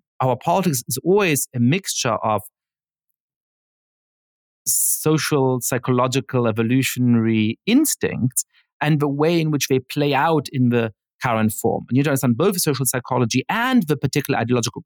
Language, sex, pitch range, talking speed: English, male, 110-140 Hz, 135 wpm